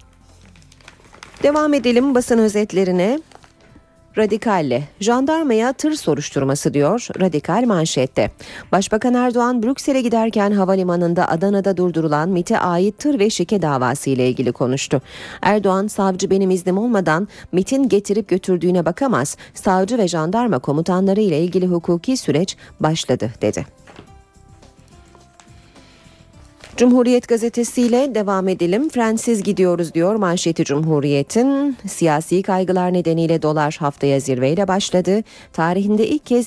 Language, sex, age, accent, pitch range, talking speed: Turkish, female, 40-59, native, 155-220 Hz, 105 wpm